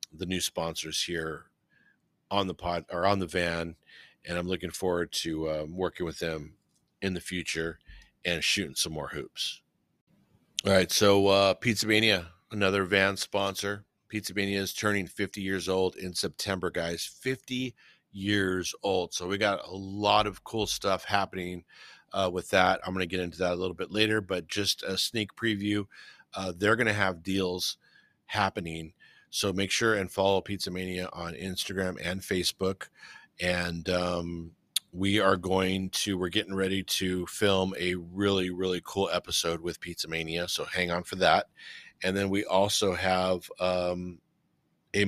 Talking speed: 170 wpm